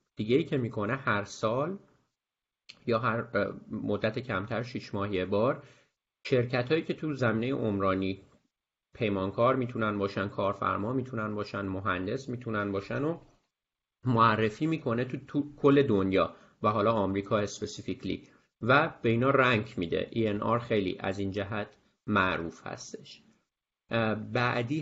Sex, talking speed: male, 135 wpm